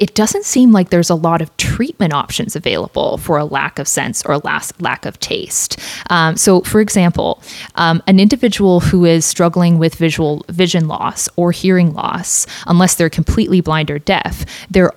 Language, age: English, 20-39